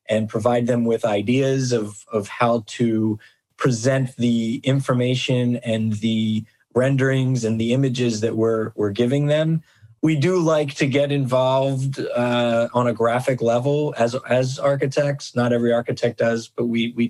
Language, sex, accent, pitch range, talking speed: English, male, American, 120-140 Hz, 155 wpm